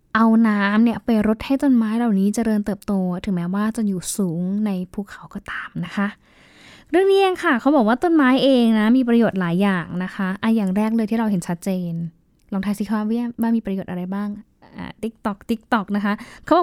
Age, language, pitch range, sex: 10-29, Thai, 200-240 Hz, female